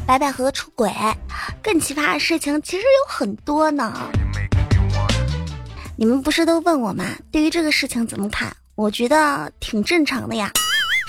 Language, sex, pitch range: Chinese, male, 255-370 Hz